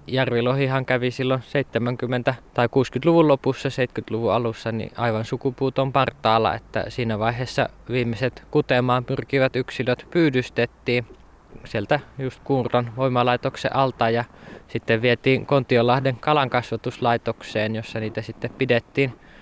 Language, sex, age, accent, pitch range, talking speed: Finnish, male, 20-39, native, 115-135 Hz, 110 wpm